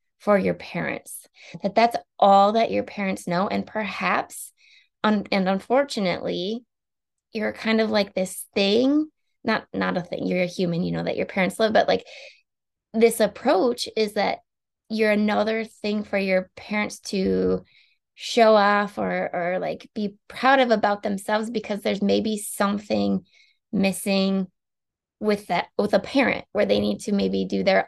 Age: 20-39